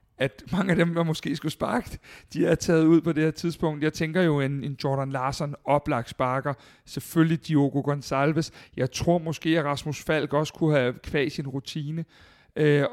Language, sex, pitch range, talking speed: Danish, male, 140-170 Hz, 190 wpm